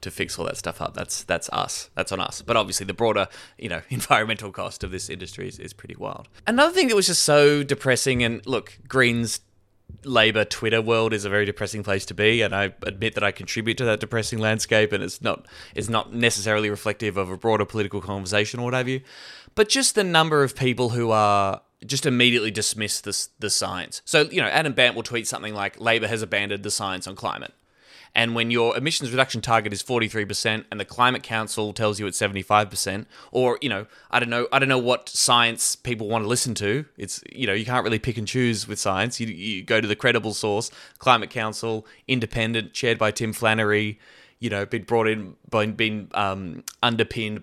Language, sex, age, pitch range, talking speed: English, male, 20-39, 105-120 Hz, 220 wpm